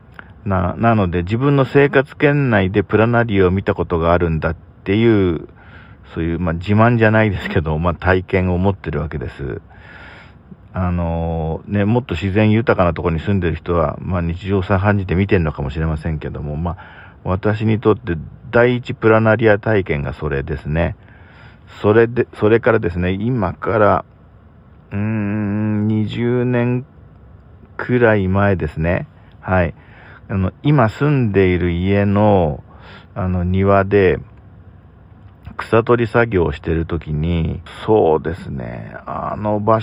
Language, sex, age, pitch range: Japanese, male, 50-69, 85-110 Hz